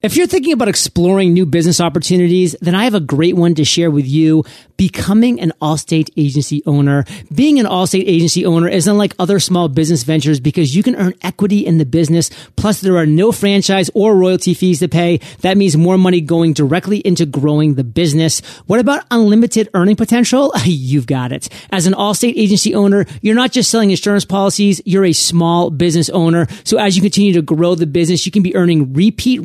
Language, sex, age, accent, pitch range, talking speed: English, male, 30-49, American, 160-195 Hz, 200 wpm